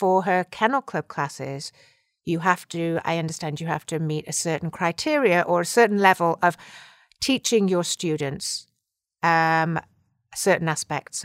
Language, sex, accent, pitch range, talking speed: English, female, British, 155-205 Hz, 150 wpm